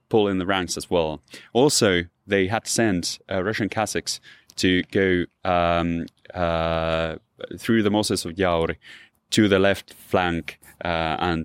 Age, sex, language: 30-49, male, English